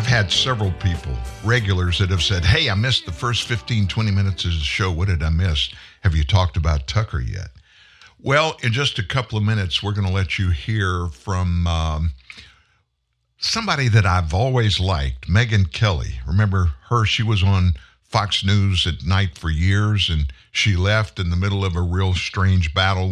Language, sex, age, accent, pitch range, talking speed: English, male, 60-79, American, 85-110 Hz, 190 wpm